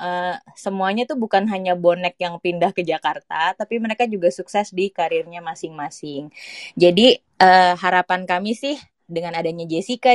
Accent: native